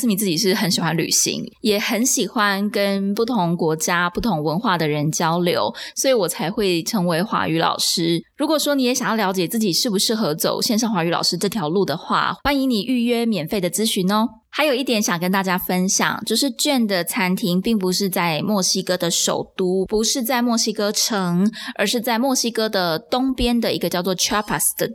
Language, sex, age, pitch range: Chinese, female, 20-39, 180-230 Hz